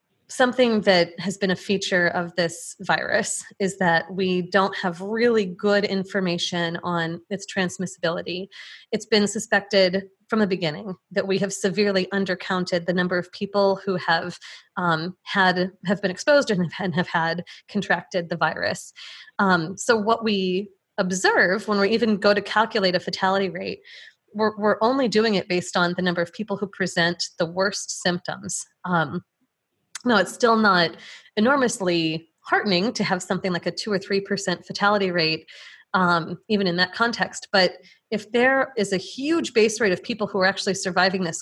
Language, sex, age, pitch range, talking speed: English, female, 30-49, 180-210 Hz, 165 wpm